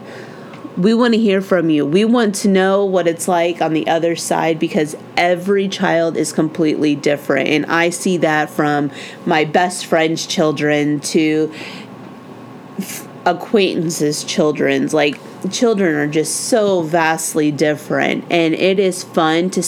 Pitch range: 155-195 Hz